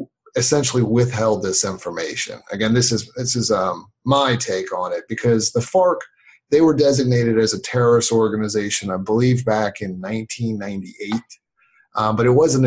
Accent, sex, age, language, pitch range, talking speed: American, male, 40-59, English, 110-130 Hz, 155 wpm